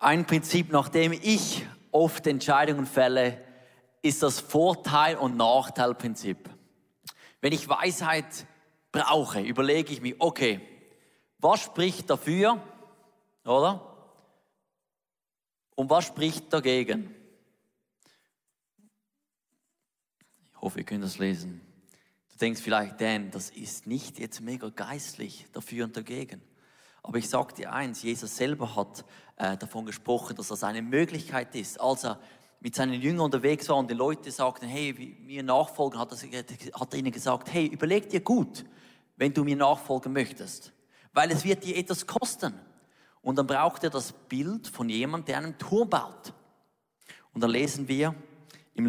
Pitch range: 125-160 Hz